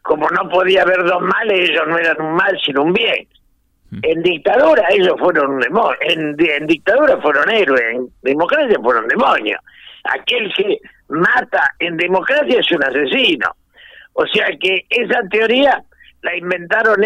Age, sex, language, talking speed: 60-79, male, Spanish, 155 wpm